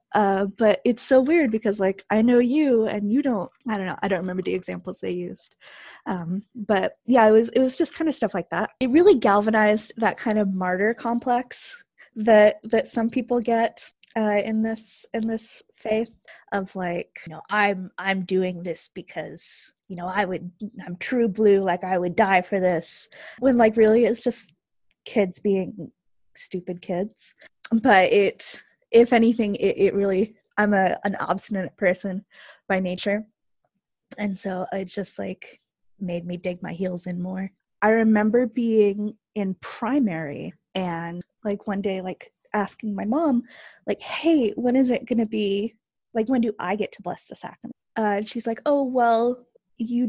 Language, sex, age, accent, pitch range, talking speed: English, female, 20-39, American, 190-235 Hz, 175 wpm